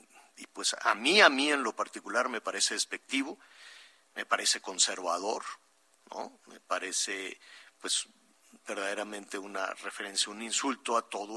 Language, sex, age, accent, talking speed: Spanish, male, 50-69, Mexican, 130 wpm